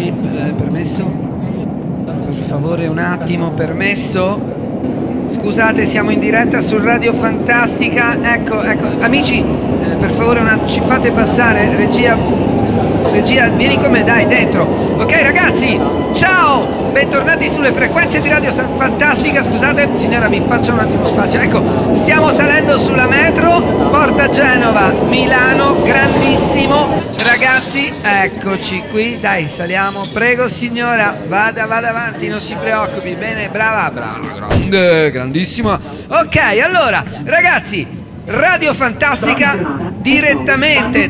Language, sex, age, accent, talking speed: Italian, male, 40-59, native, 115 wpm